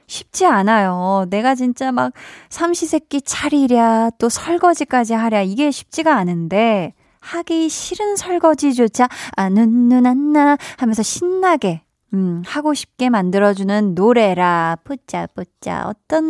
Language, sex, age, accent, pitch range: Korean, female, 20-39, native, 195-295 Hz